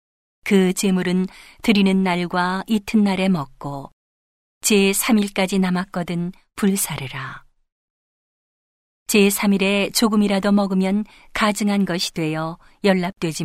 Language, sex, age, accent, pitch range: Korean, female, 40-59, native, 155-200 Hz